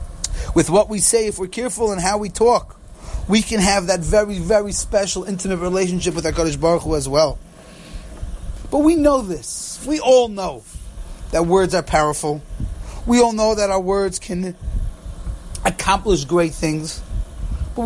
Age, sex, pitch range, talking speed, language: 30-49, male, 160-210 Hz, 165 wpm, English